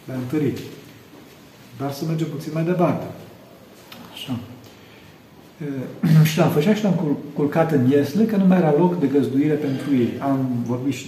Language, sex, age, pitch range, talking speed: Romanian, male, 40-59, 120-150 Hz, 140 wpm